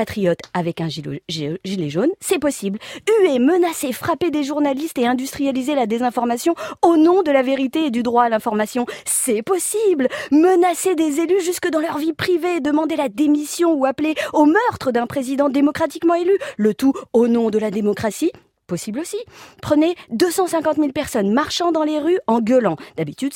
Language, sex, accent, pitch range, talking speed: French, female, French, 220-325 Hz, 170 wpm